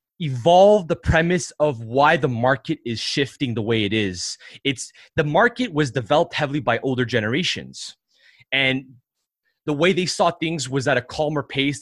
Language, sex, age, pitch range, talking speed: English, male, 20-39, 120-160 Hz, 170 wpm